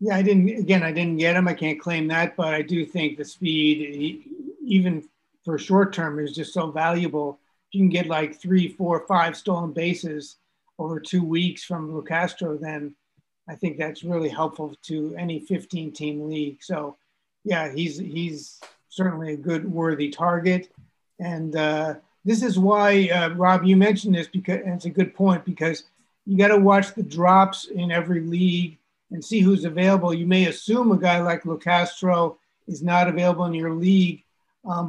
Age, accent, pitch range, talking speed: 60-79, American, 165-190 Hz, 180 wpm